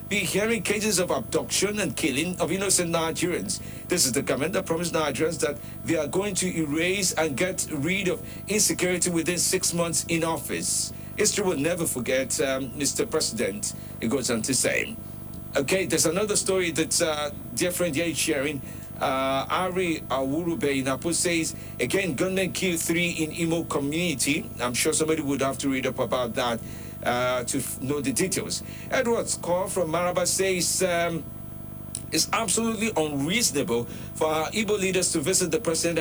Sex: male